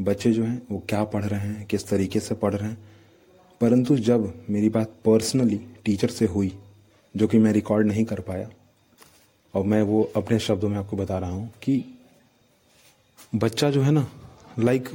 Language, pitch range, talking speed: Hindi, 105-125 Hz, 180 wpm